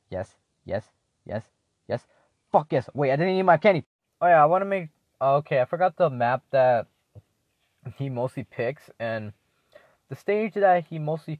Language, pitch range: English, 100-135 Hz